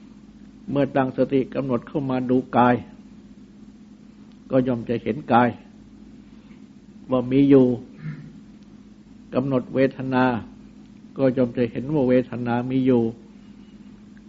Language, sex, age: Thai, male, 60-79